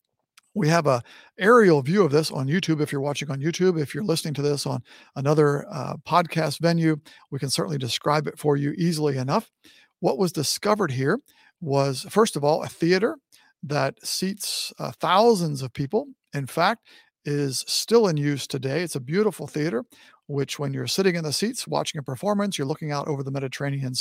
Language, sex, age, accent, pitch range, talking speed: English, male, 50-69, American, 140-175 Hz, 190 wpm